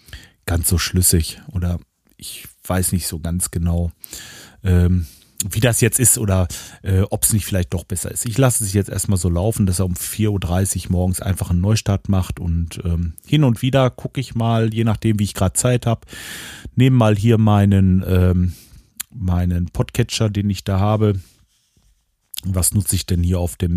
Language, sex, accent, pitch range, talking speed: German, male, German, 95-110 Hz, 180 wpm